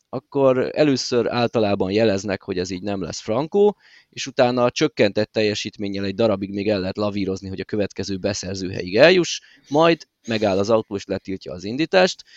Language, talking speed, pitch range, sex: Hungarian, 165 wpm, 100-130 Hz, male